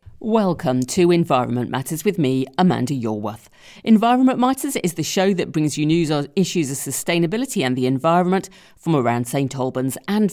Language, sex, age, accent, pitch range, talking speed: English, female, 40-59, British, 130-205 Hz, 170 wpm